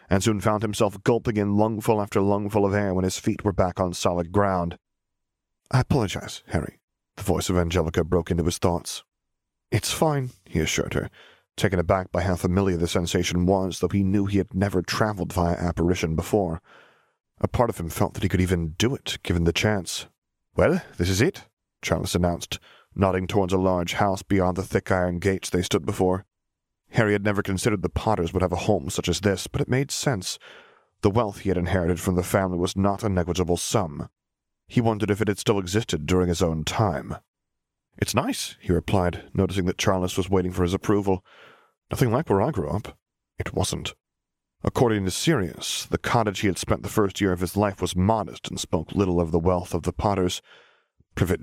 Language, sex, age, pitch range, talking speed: English, male, 30-49, 90-105 Hz, 200 wpm